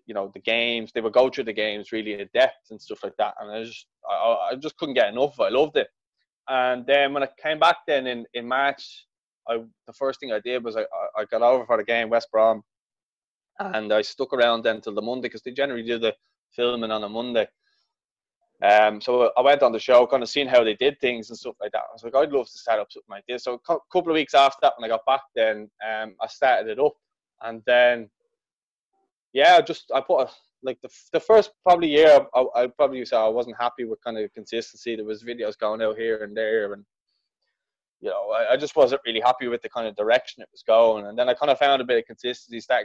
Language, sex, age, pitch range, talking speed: English, male, 20-39, 110-135 Hz, 250 wpm